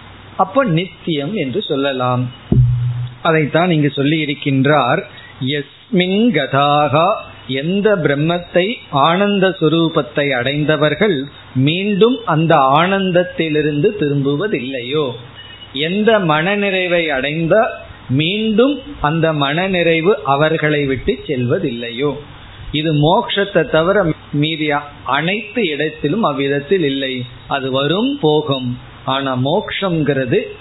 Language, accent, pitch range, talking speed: Tamil, native, 135-175 Hz, 65 wpm